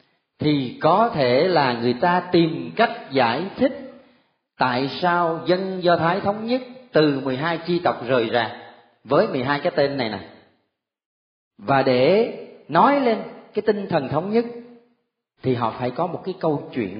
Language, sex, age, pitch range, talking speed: Vietnamese, male, 30-49, 115-170 Hz, 160 wpm